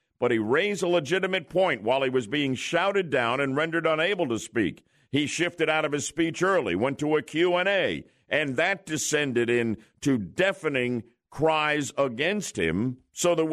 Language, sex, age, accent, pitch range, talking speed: English, male, 50-69, American, 125-185 Hz, 175 wpm